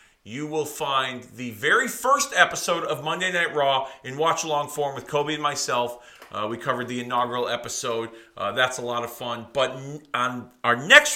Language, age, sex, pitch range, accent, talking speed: English, 40-59, male, 125-160 Hz, American, 185 wpm